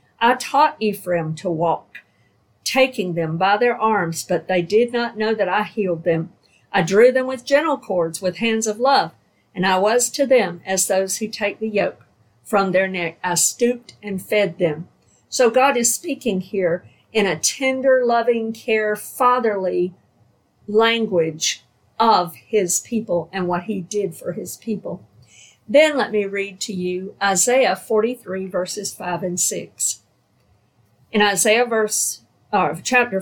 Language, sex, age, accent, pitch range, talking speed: English, female, 50-69, American, 175-230 Hz, 155 wpm